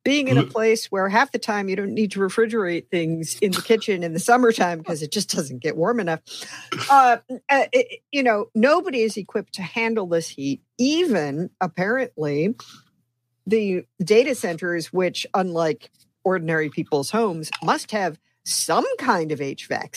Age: 50-69